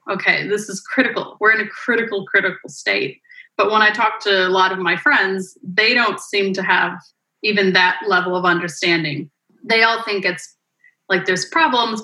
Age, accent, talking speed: 30-49, American, 185 wpm